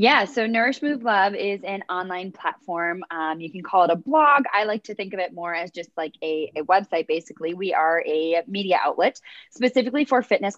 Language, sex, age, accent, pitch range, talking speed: English, female, 20-39, American, 170-220 Hz, 215 wpm